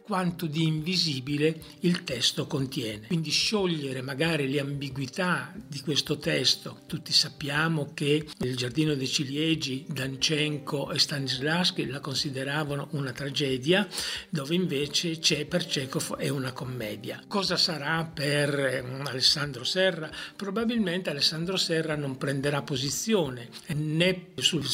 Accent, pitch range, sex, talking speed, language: native, 140-170 Hz, male, 120 wpm, Italian